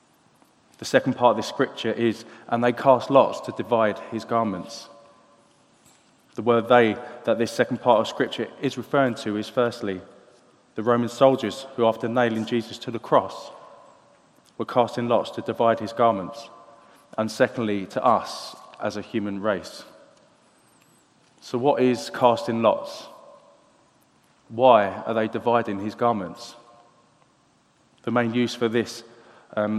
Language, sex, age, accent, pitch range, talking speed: English, male, 20-39, British, 110-125 Hz, 145 wpm